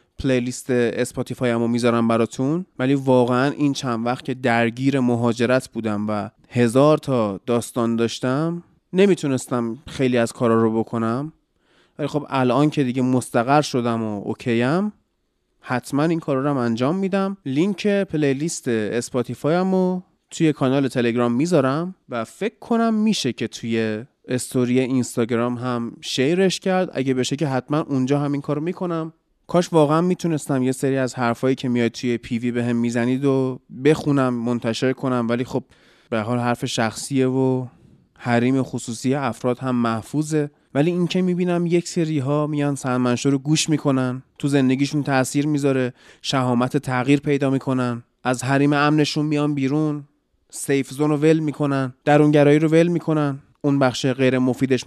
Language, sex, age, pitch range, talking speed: Persian, male, 30-49, 120-150 Hz, 145 wpm